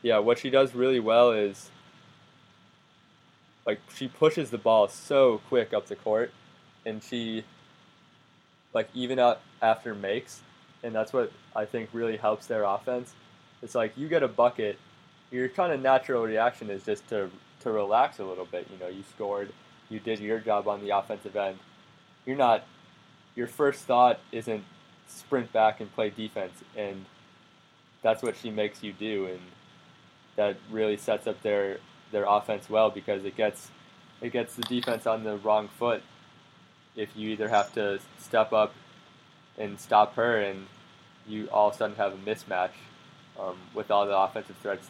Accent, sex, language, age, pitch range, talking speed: American, male, English, 20-39, 100-120 Hz, 170 wpm